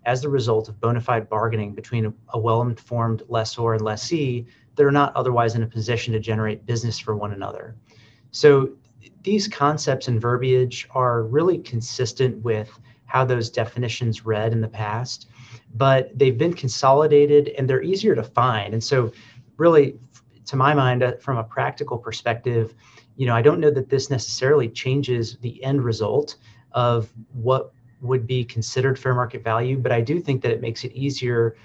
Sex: male